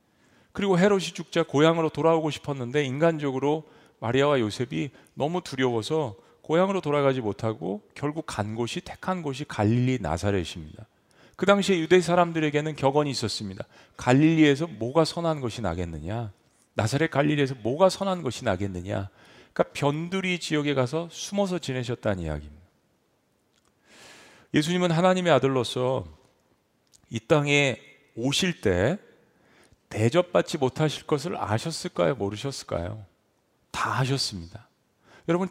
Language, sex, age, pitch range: Korean, male, 40-59, 115-170 Hz